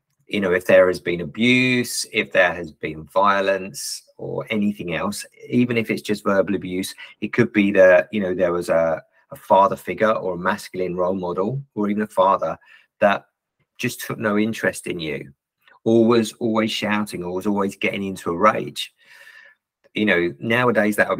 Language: English